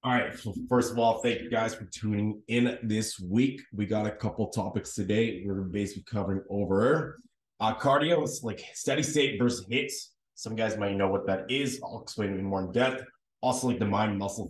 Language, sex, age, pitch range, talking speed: English, male, 20-39, 95-125 Hz, 210 wpm